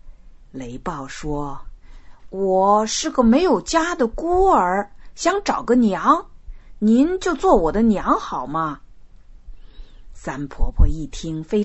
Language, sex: Chinese, female